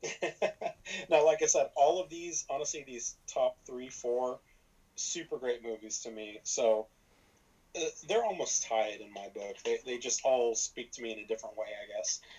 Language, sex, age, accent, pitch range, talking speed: English, male, 30-49, American, 115-175 Hz, 185 wpm